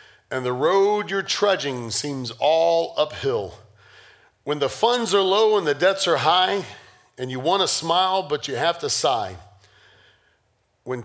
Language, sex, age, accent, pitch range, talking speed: English, male, 40-59, American, 120-190 Hz, 150 wpm